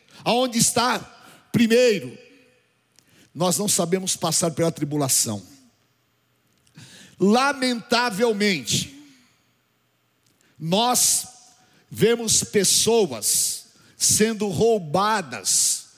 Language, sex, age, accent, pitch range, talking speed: Portuguese, male, 50-69, Brazilian, 155-230 Hz, 55 wpm